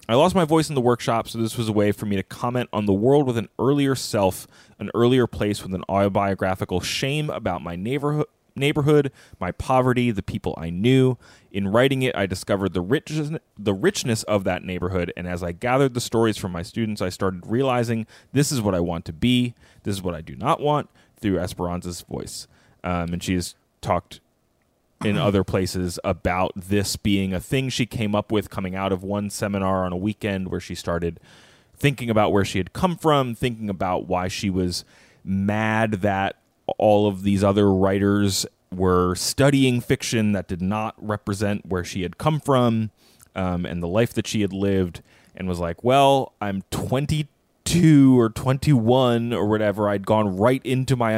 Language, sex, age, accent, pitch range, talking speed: English, male, 30-49, American, 95-125 Hz, 190 wpm